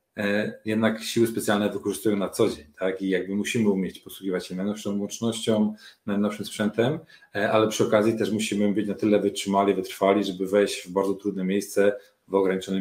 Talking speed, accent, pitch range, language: 170 wpm, native, 95-110 Hz, Polish